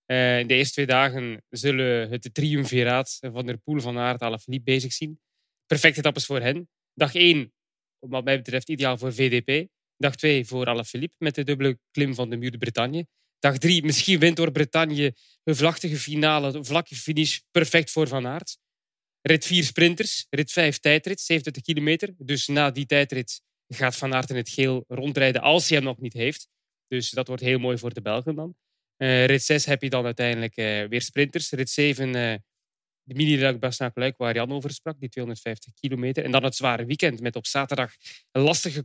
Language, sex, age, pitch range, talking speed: English, male, 20-39, 125-150 Hz, 190 wpm